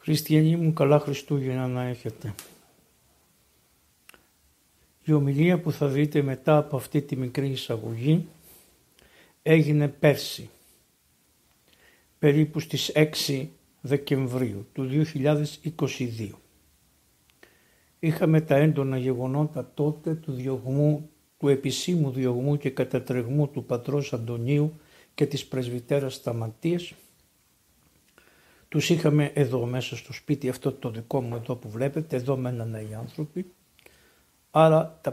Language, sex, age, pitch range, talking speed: Greek, male, 60-79, 130-155 Hz, 110 wpm